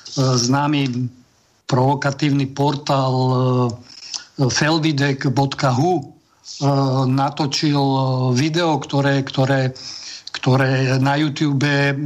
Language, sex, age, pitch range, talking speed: Slovak, male, 50-69, 135-150 Hz, 55 wpm